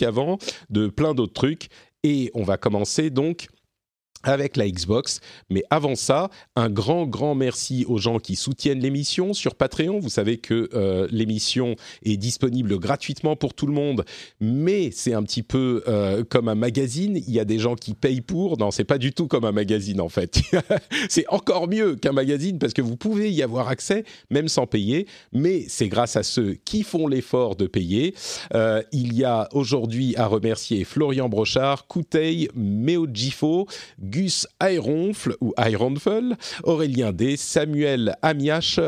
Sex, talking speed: male, 170 wpm